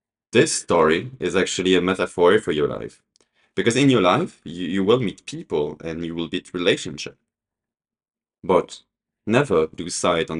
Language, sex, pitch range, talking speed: English, male, 80-110 Hz, 155 wpm